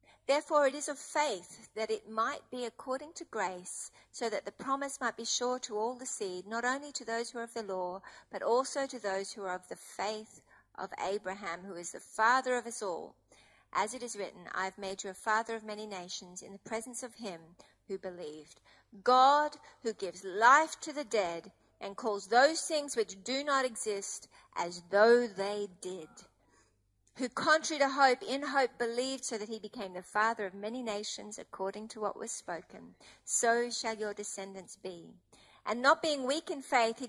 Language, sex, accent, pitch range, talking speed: English, female, Australian, 195-265 Hz, 195 wpm